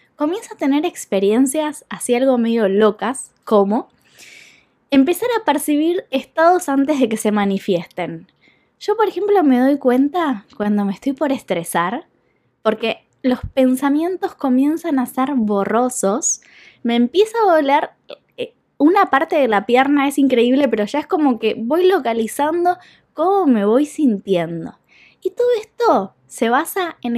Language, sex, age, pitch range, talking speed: Spanish, female, 10-29, 210-300 Hz, 140 wpm